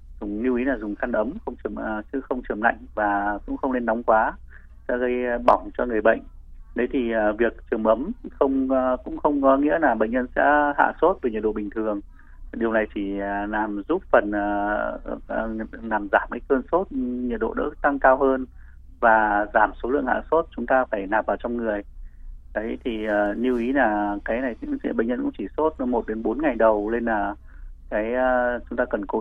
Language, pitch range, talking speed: Vietnamese, 105-140 Hz, 205 wpm